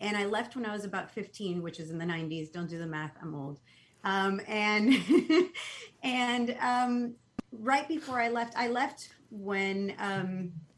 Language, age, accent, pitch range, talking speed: English, 30-49, American, 165-215 Hz, 175 wpm